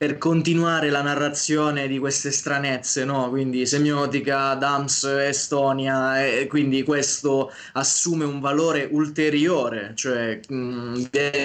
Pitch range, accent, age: 120-140 Hz, native, 20-39